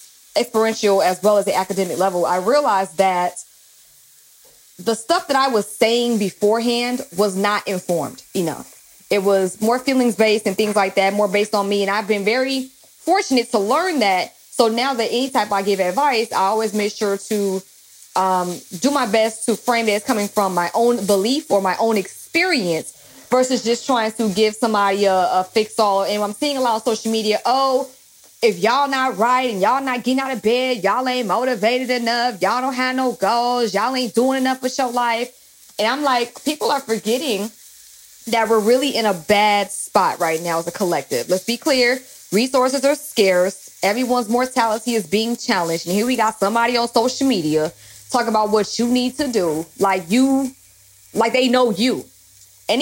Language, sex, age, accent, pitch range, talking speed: English, female, 20-39, American, 200-255 Hz, 195 wpm